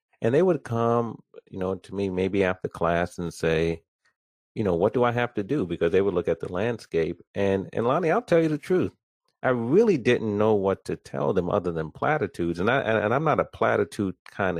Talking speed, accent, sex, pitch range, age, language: 235 wpm, American, male, 90-125 Hz, 40-59, English